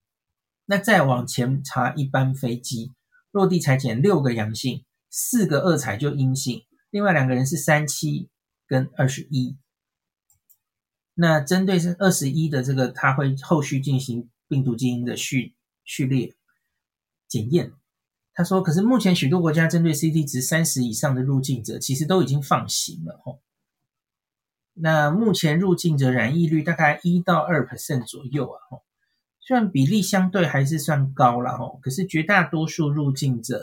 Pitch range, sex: 130-175 Hz, male